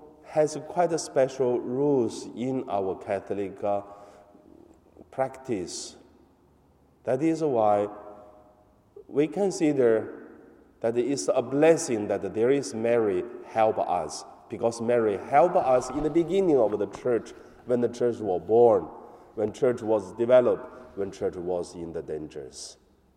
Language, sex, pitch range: Chinese, male, 95-145 Hz